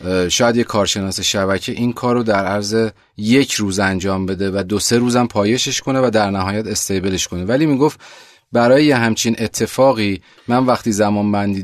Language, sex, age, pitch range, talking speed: Persian, male, 30-49, 100-125 Hz, 175 wpm